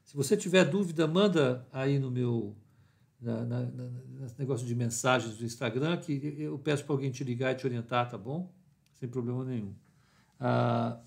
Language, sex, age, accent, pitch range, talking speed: Portuguese, male, 60-79, Brazilian, 130-180 Hz, 175 wpm